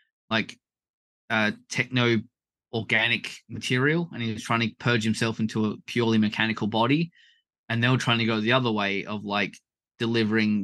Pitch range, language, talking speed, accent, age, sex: 110-130 Hz, English, 160 wpm, Australian, 20-39, male